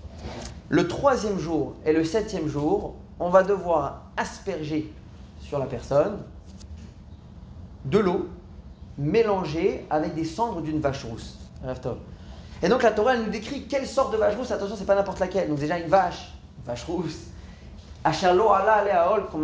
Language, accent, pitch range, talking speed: French, French, 125-175 Hz, 160 wpm